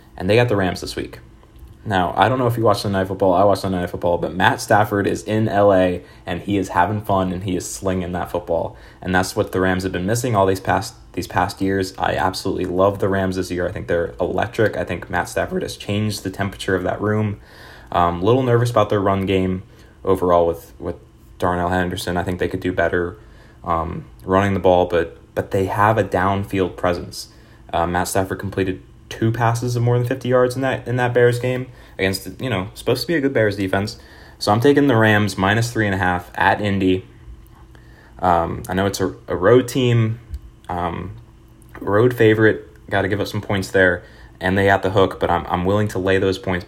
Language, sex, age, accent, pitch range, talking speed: English, male, 20-39, American, 90-110 Hz, 225 wpm